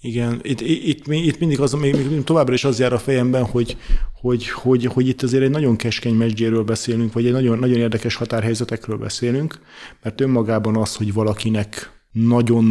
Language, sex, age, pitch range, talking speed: Hungarian, male, 30-49, 115-125 Hz, 170 wpm